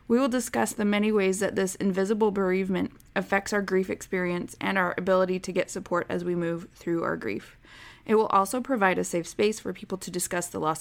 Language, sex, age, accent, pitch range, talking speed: English, female, 20-39, American, 170-220 Hz, 215 wpm